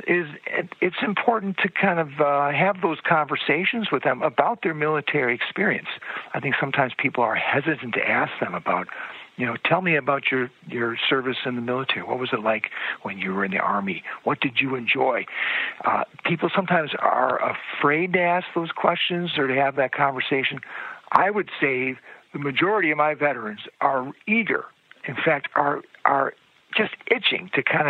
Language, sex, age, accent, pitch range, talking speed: English, male, 60-79, American, 140-190 Hz, 180 wpm